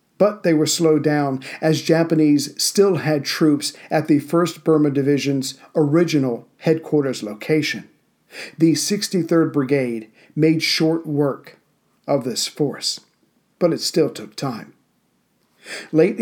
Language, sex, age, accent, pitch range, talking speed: English, male, 50-69, American, 140-160 Hz, 120 wpm